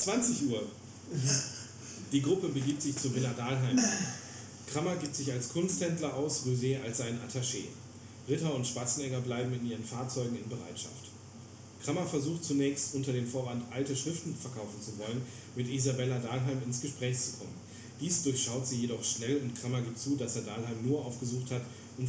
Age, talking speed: 40-59, 170 wpm